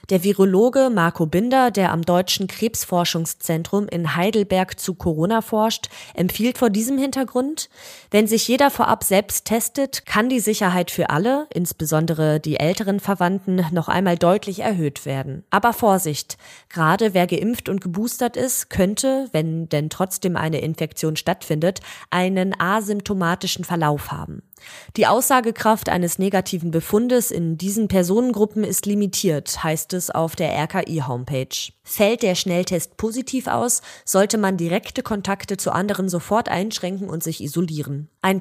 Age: 20-39